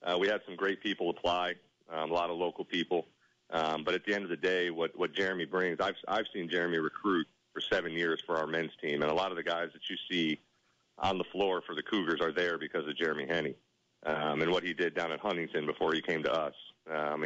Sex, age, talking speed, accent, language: male, 40-59, 250 wpm, American, English